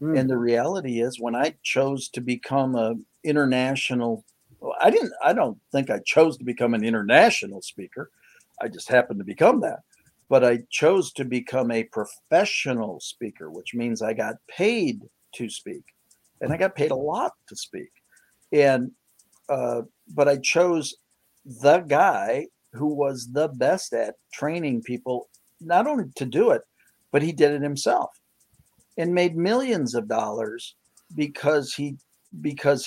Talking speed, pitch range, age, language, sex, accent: 155 wpm, 120-150 Hz, 50-69, English, male, American